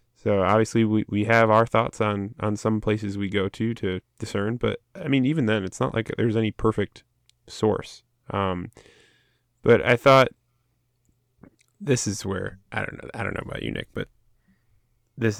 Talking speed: 180 wpm